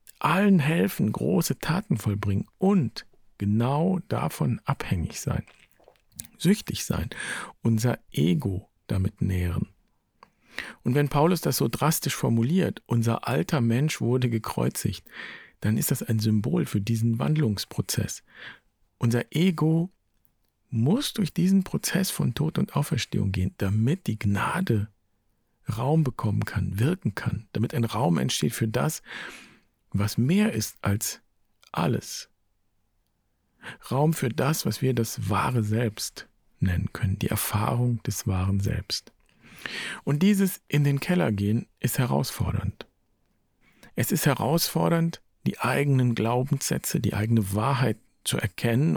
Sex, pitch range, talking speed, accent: male, 105-150 Hz, 125 wpm, German